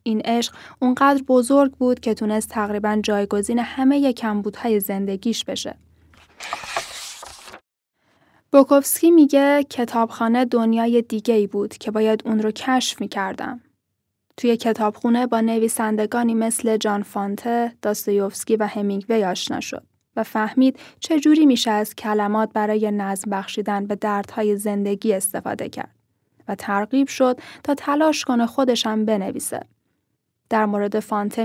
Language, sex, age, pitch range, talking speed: Persian, female, 10-29, 210-250 Hz, 120 wpm